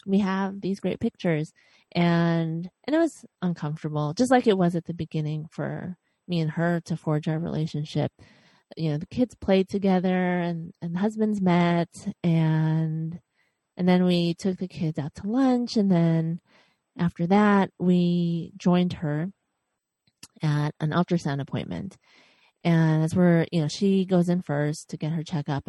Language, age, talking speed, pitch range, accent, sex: English, 30-49, 165 wpm, 160-190 Hz, American, female